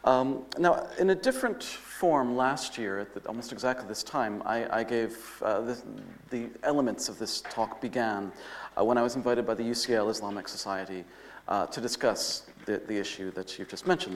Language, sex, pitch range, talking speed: English, male, 110-155 Hz, 190 wpm